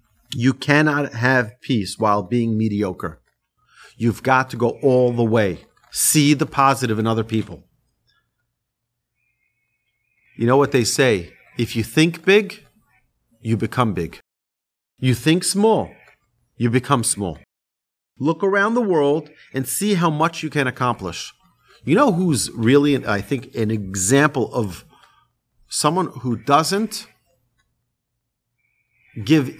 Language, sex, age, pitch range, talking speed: English, male, 40-59, 115-150 Hz, 125 wpm